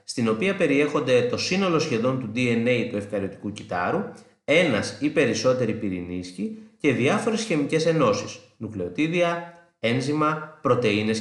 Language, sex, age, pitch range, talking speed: Greek, male, 30-49, 110-165 Hz, 110 wpm